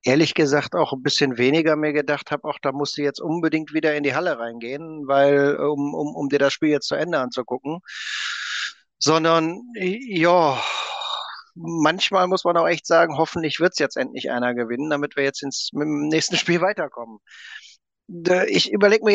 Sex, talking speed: male, 180 wpm